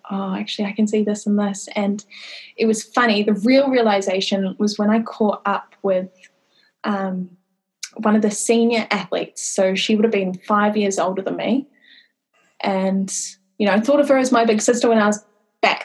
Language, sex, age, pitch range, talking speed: English, female, 10-29, 200-240 Hz, 195 wpm